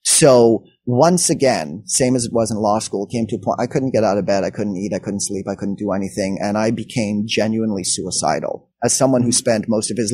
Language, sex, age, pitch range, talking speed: English, male, 30-49, 110-135 Hz, 250 wpm